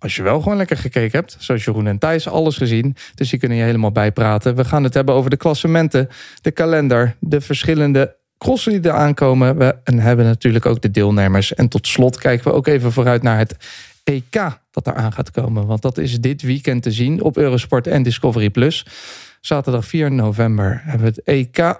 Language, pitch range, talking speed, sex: Dutch, 110-145 Hz, 205 wpm, male